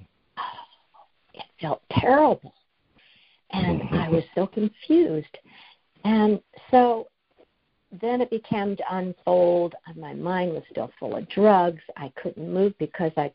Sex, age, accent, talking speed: female, 60-79, American, 125 wpm